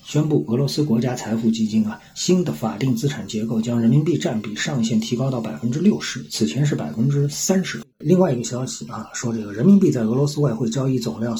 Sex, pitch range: male, 115-150 Hz